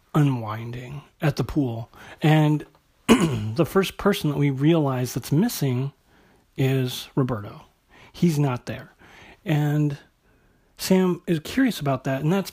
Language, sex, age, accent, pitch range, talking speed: English, male, 40-59, American, 125-155 Hz, 125 wpm